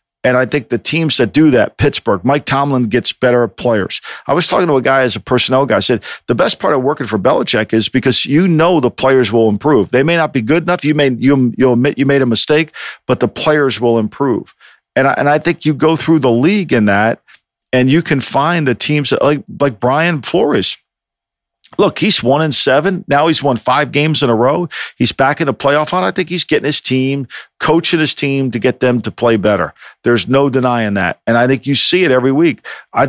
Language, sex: English, male